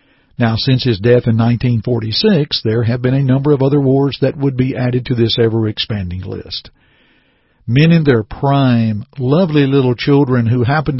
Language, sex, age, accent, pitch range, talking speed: English, male, 50-69, American, 115-150 Hz, 170 wpm